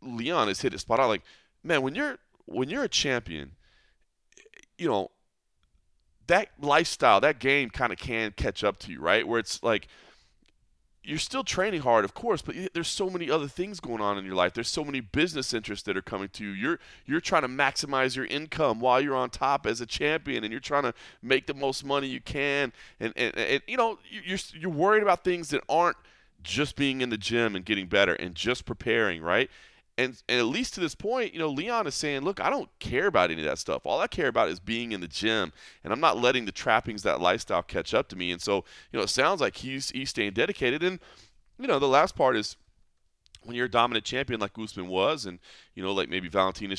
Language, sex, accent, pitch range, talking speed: English, male, American, 100-155 Hz, 230 wpm